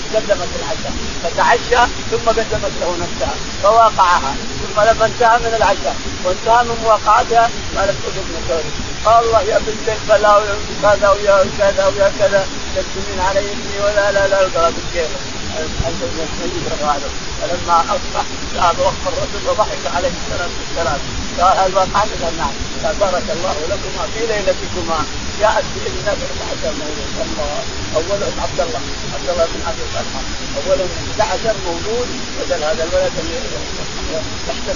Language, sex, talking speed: Arabic, male, 110 wpm